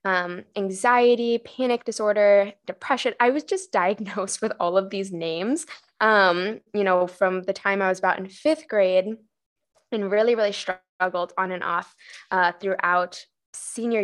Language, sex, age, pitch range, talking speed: English, female, 10-29, 185-235 Hz, 155 wpm